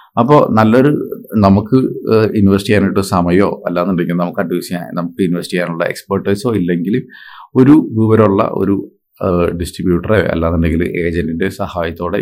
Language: Malayalam